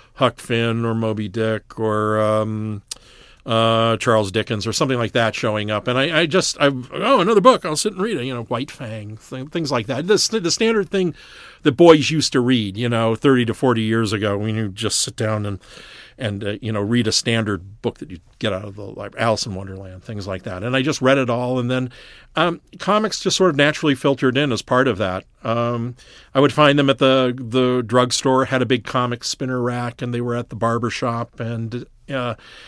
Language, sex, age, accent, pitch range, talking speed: English, male, 50-69, American, 110-130 Hz, 230 wpm